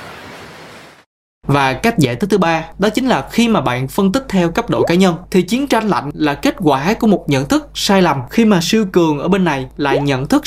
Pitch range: 145-205 Hz